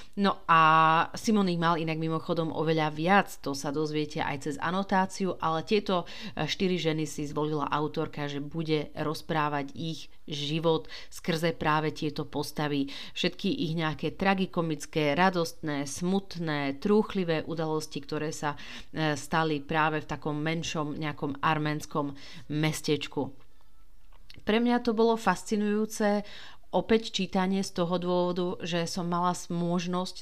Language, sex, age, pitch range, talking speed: Slovak, female, 40-59, 155-185 Hz, 125 wpm